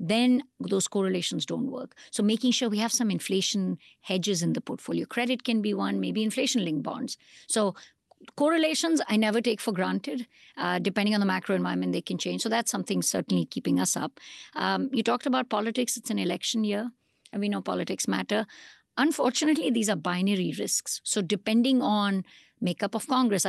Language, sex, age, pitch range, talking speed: English, female, 50-69, 185-240 Hz, 180 wpm